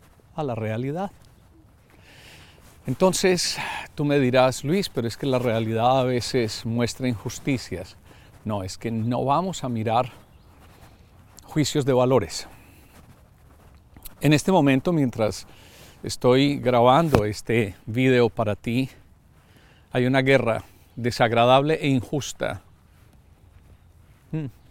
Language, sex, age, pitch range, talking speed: Spanish, male, 50-69, 105-145 Hz, 105 wpm